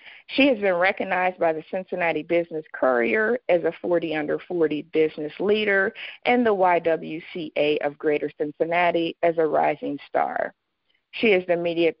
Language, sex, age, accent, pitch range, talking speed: English, female, 50-69, American, 155-200 Hz, 150 wpm